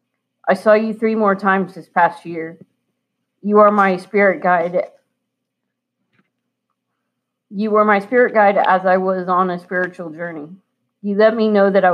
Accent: American